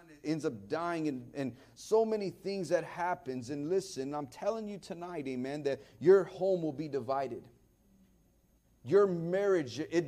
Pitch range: 145-185 Hz